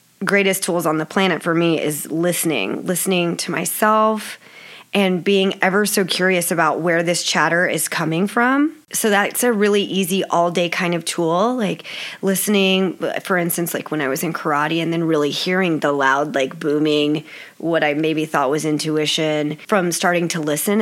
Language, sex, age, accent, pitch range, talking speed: English, female, 20-39, American, 170-200 Hz, 180 wpm